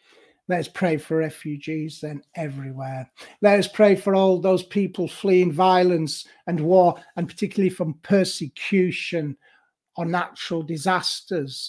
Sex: male